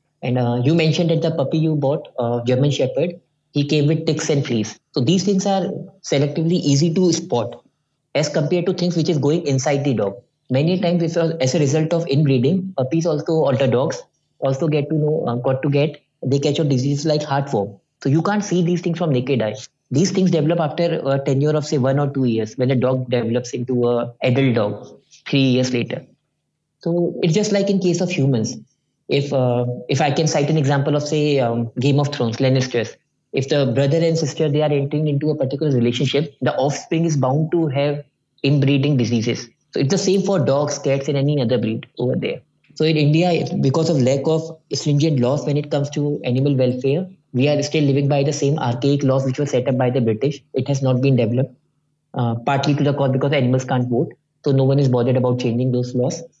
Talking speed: 220 wpm